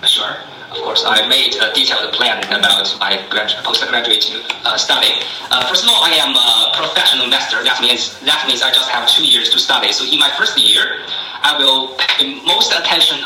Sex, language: male, Chinese